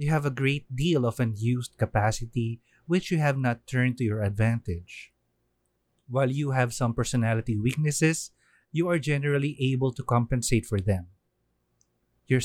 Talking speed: 150 wpm